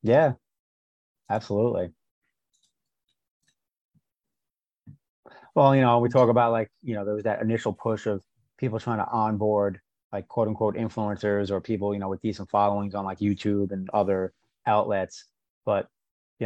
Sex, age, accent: male, 30-49, American